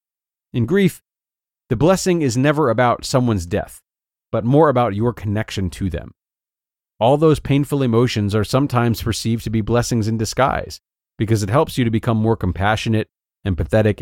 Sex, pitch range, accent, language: male, 100-125 Hz, American, English